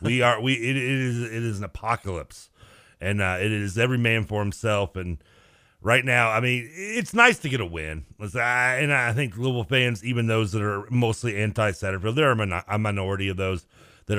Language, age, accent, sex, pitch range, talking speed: English, 40-59, American, male, 95-130 Hz, 195 wpm